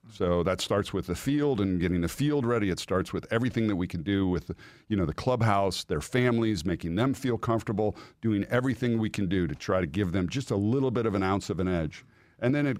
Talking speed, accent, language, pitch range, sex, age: 250 wpm, American, English, 90-110 Hz, male, 50-69